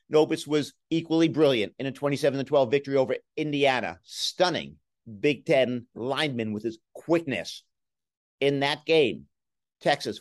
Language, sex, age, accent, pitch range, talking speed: English, male, 50-69, American, 120-165 Hz, 125 wpm